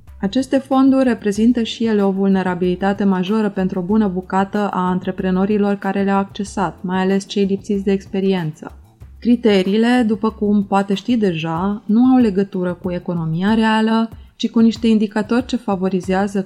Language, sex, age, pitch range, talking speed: Romanian, female, 20-39, 185-225 Hz, 150 wpm